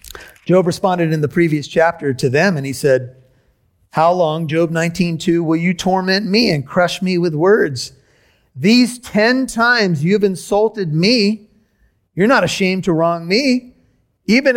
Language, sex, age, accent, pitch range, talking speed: English, male, 40-59, American, 160-230 Hz, 150 wpm